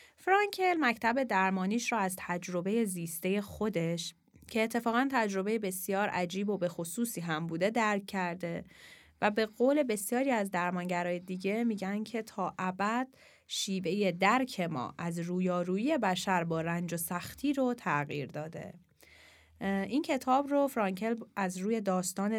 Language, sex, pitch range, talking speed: Persian, female, 175-240 Hz, 135 wpm